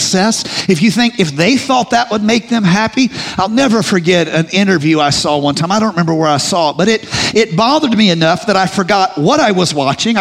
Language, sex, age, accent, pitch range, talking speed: English, male, 50-69, American, 150-215 Hz, 235 wpm